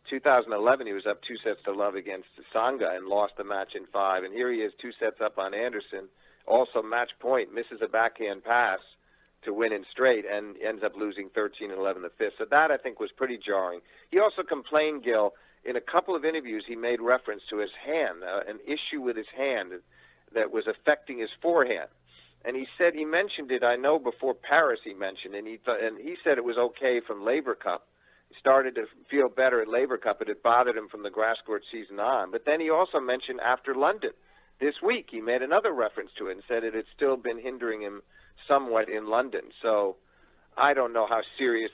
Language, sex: English, male